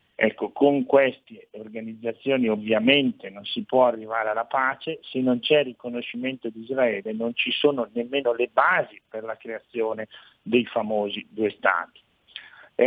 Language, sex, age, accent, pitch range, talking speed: Italian, male, 50-69, native, 120-140 Hz, 145 wpm